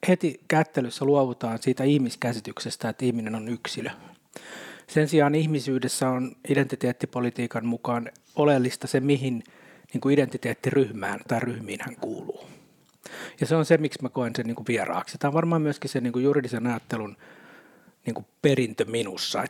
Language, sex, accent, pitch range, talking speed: Finnish, male, native, 120-145 Hz, 125 wpm